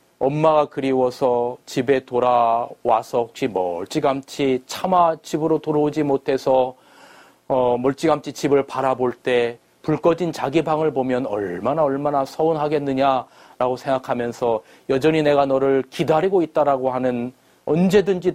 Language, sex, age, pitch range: Korean, male, 30-49, 125-160 Hz